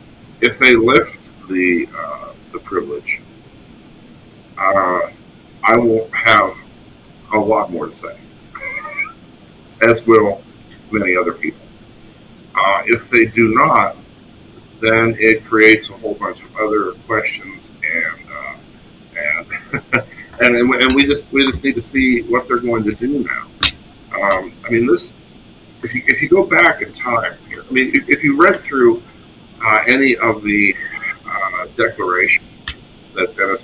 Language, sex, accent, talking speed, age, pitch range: English, male, American, 145 wpm, 50-69, 110-130 Hz